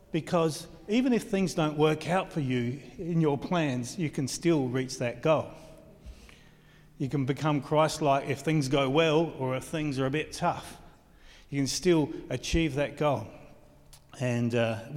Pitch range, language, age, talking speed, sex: 130-160 Hz, English, 40-59, 165 wpm, male